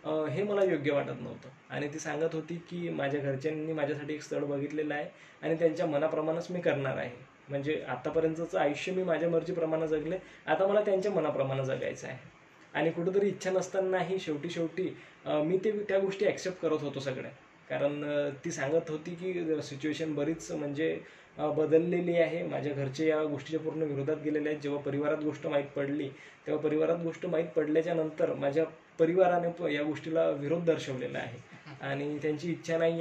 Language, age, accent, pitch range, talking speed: Marathi, 20-39, native, 150-175 Hz, 165 wpm